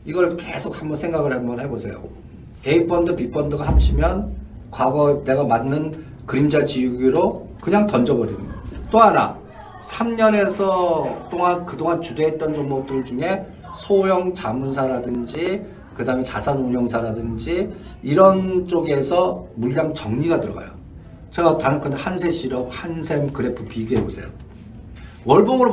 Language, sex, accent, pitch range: Korean, male, native, 125-180 Hz